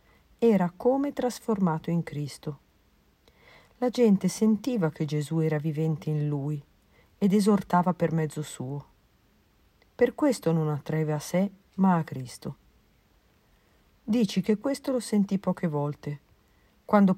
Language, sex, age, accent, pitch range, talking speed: Italian, female, 50-69, native, 155-210 Hz, 125 wpm